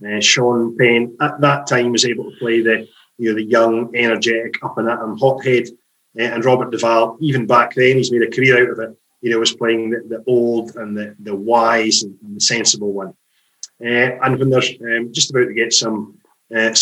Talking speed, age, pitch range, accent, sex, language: 220 wpm, 30-49, 115-130 Hz, British, male, English